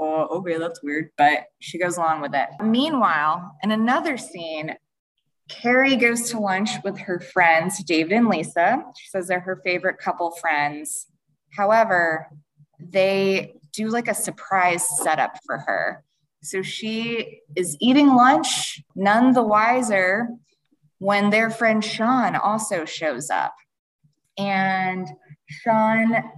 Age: 20-39